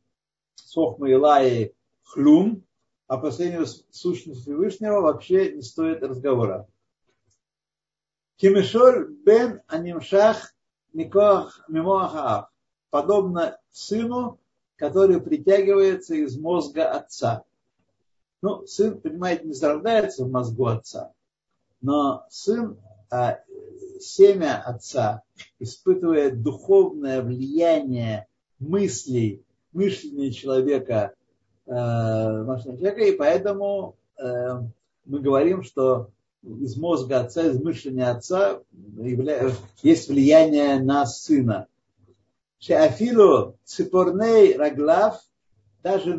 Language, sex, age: Russian, male, 50-69